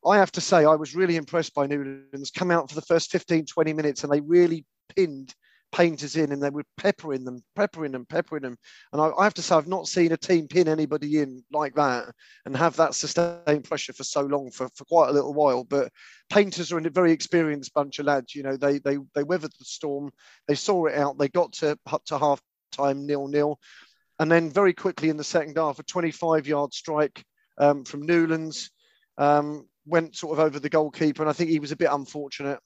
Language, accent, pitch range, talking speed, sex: English, British, 140-165 Hz, 230 wpm, male